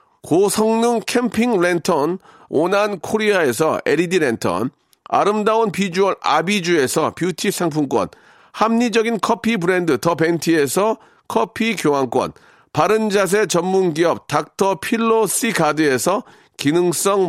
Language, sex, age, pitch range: Korean, male, 40-59, 170-220 Hz